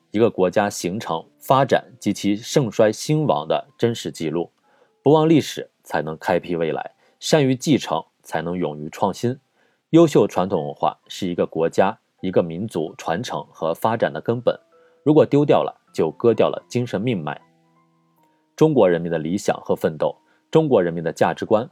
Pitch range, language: 90-140 Hz, Chinese